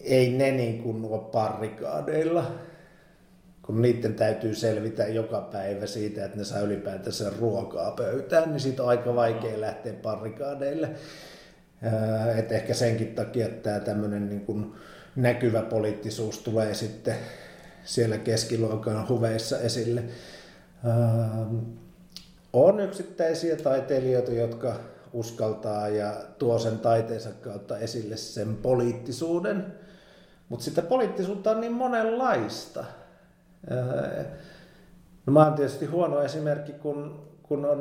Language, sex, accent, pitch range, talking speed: Finnish, male, native, 110-145 Hz, 105 wpm